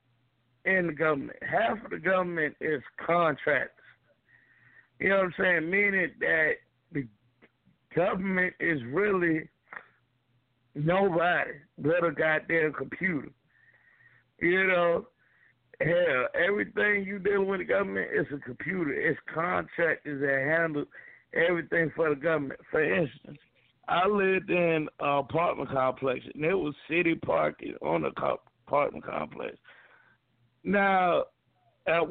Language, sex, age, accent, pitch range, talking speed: English, male, 60-79, American, 130-190 Hz, 120 wpm